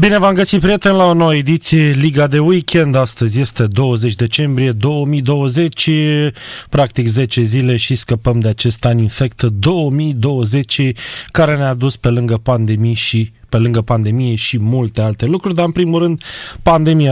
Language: Romanian